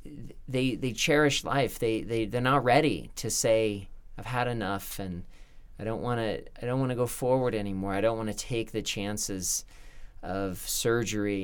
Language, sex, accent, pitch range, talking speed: English, male, American, 95-125 Hz, 180 wpm